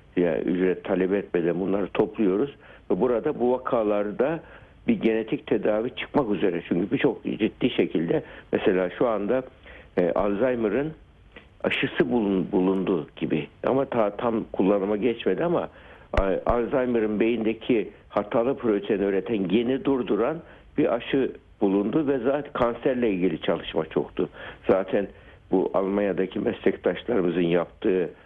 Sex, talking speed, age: male, 115 wpm, 60-79